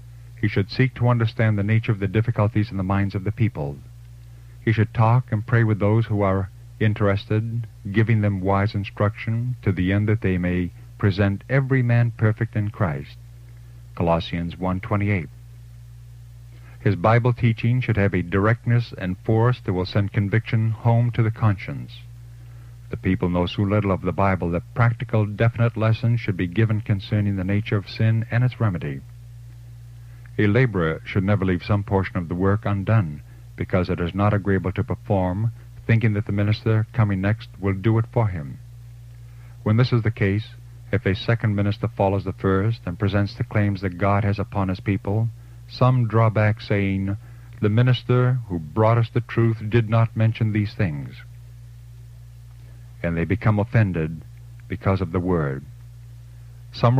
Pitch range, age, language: 100-120 Hz, 50-69, English